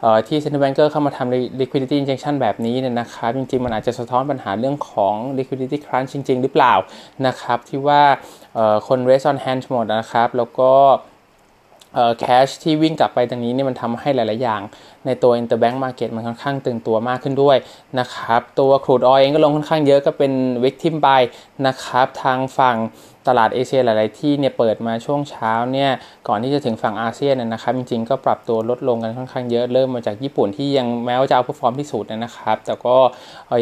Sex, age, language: male, 20-39, Thai